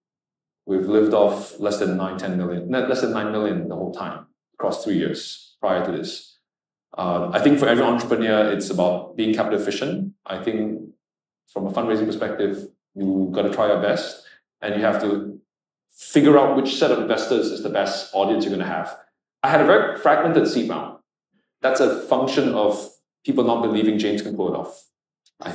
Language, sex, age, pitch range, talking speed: English, male, 20-39, 100-125 Hz, 190 wpm